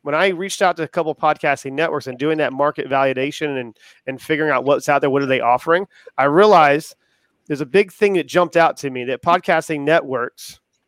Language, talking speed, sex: English, 220 wpm, male